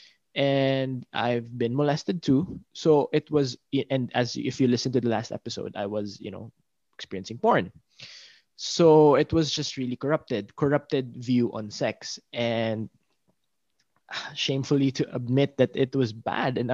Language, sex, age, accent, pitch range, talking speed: English, male, 20-39, Filipino, 120-145 Hz, 150 wpm